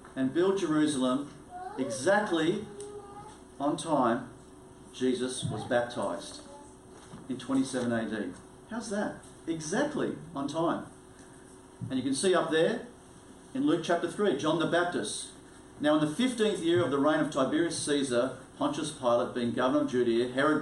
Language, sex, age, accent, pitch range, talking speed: English, male, 40-59, Australian, 130-205 Hz, 140 wpm